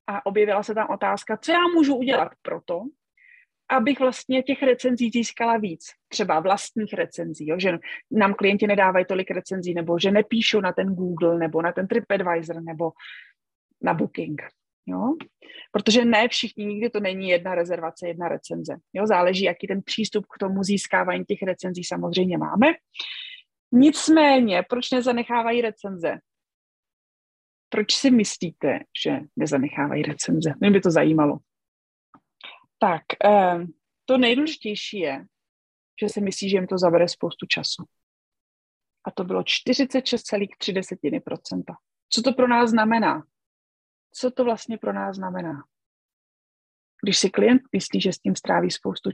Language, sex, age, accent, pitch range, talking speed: Czech, female, 30-49, native, 180-240 Hz, 135 wpm